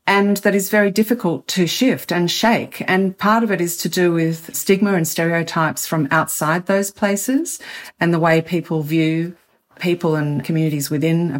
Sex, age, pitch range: female, 40-59, 160-205 Hz